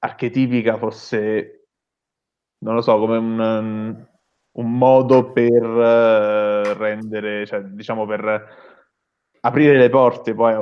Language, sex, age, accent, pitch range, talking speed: Italian, male, 20-39, native, 100-115 Hz, 105 wpm